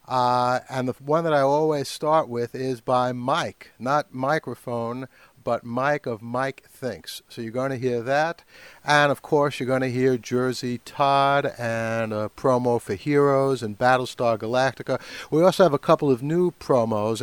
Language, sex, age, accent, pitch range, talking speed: English, male, 60-79, American, 120-145 Hz, 175 wpm